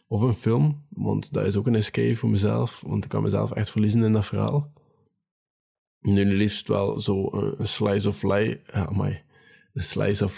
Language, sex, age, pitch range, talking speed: Dutch, male, 20-39, 100-115 Hz, 185 wpm